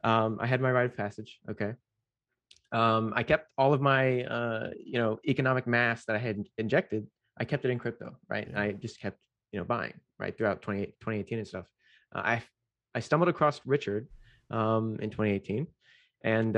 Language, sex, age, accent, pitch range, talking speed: English, male, 20-39, American, 105-120 Hz, 190 wpm